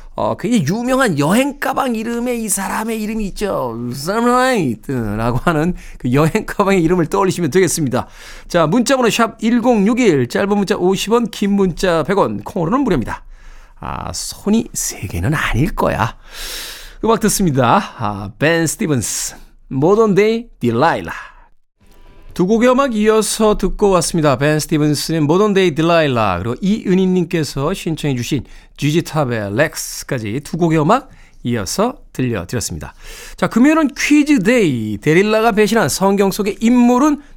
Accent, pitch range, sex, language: native, 145-225 Hz, male, Korean